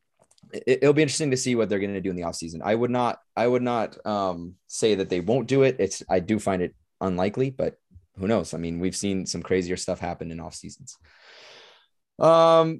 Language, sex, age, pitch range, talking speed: English, male, 20-39, 100-140 Hz, 220 wpm